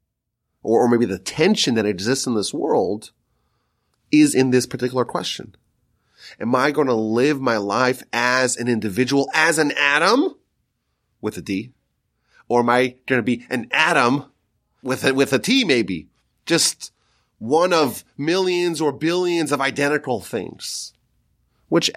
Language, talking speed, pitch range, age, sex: English, 150 wpm, 120-165 Hz, 30-49, male